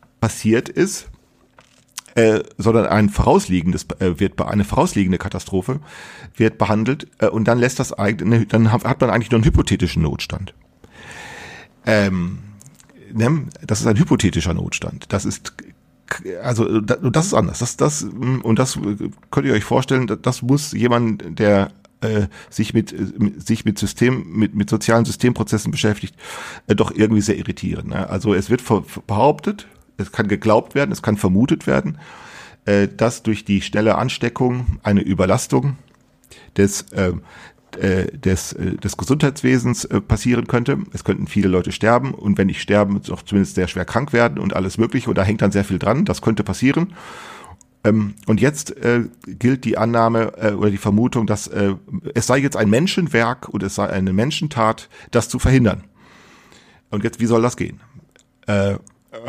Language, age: German, 40-59